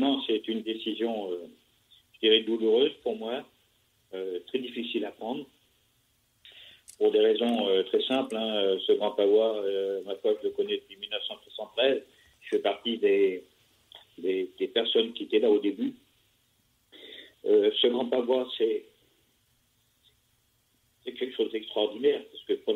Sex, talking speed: male, 150 wpm